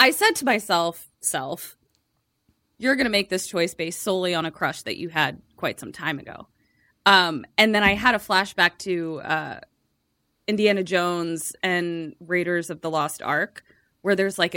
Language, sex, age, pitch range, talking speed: English, female, 20-39, 165-210 Hz, 175 wpm